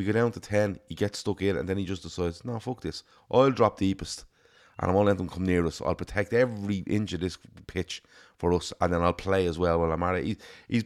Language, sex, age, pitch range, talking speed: English, male, 30-49, 90-105 Hz, 260 wpm